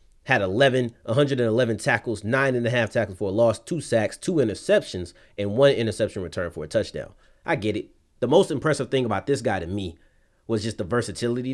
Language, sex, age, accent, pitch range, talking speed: English, male, 30-49, American, 95-140 Hz, 205 wpm